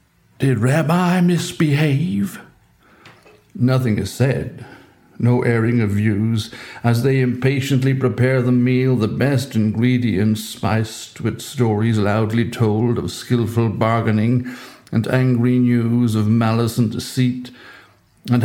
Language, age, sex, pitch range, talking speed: English, 60-79, male, 110-135 Hz, 115 wpm